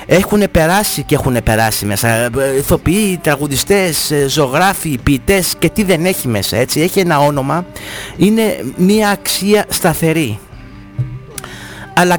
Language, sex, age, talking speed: English, male, 30-49, 120 wpm